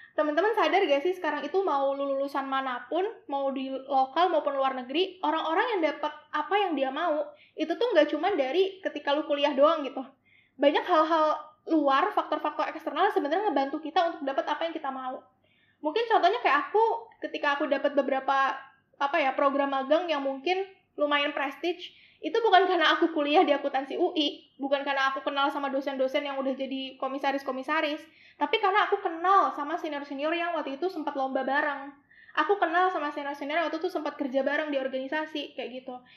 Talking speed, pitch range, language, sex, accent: 175 wpm, 275-345 Hz, Indonesian, female, native